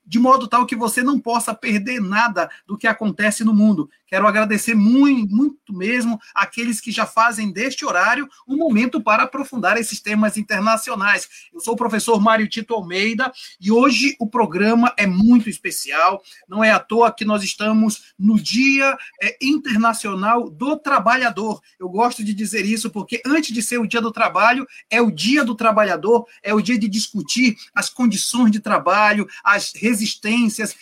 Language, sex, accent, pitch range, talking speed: Portuguese, male, Brazilian, 215-245 Hz, 170 wpm